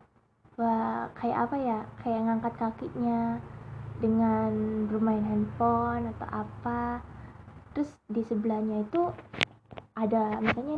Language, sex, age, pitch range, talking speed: Indonesian, female, 20-39, 205-240 Hz, 100 wpm